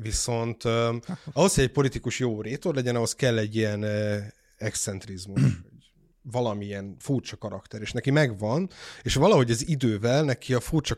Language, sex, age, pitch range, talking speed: Hungarian, male, 30-49, 110-130 Hz, 140 wpm